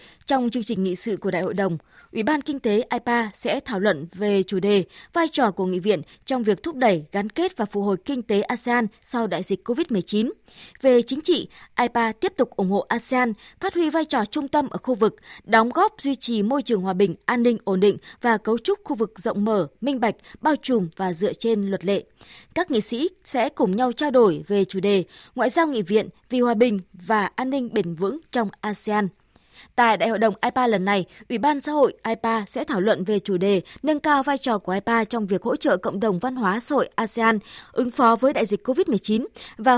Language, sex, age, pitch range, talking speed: Vietnamese, female, 20-39, 205-270 Hz, 235 wpm